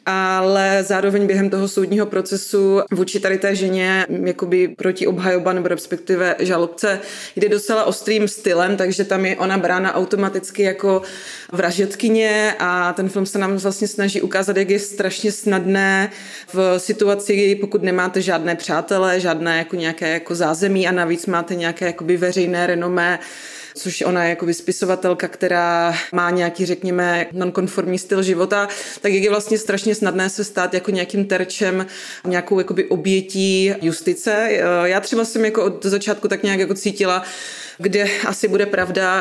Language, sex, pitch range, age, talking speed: Czech, female, 180-200 Hz, 20-39, 145 wpm